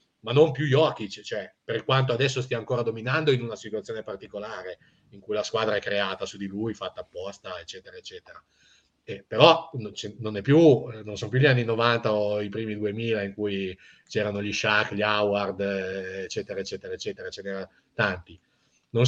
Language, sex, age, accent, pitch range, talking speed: Italian, male, 30-49, native, 100-130 Hz, 180 wpm